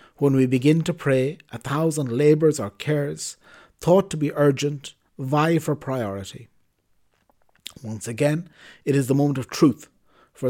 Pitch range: 120-145 Hz